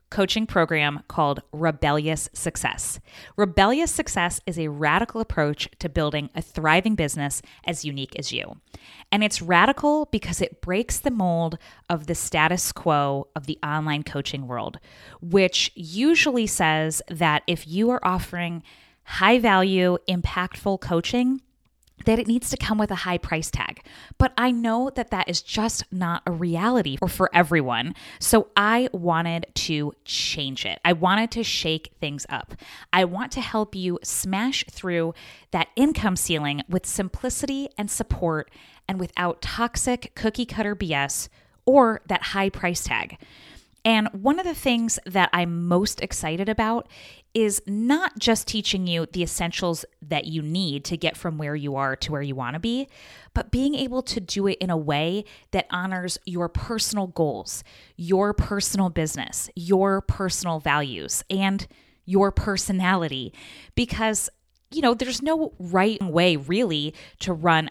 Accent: American